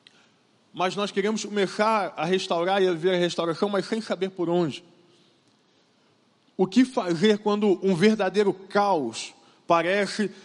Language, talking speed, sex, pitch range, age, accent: Portuguese, 140 wpm, male, 170-205 Hz, 20-39, Brazilian